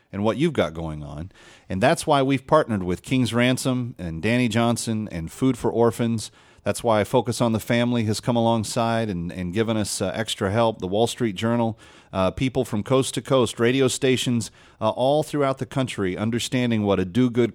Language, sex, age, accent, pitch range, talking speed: English, male, 40-59, American, 105-145 Hz, 200 wpm